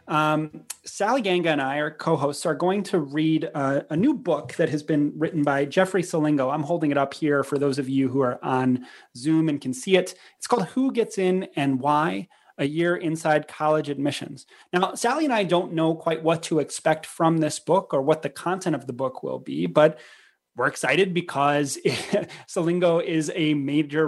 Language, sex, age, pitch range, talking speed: English, male, 30-49, 140-175 Hz, 200 wpm